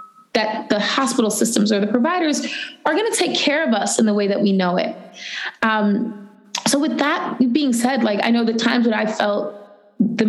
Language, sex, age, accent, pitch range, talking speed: English, female, 20-39, American, 215-260 Hz, 210 wpm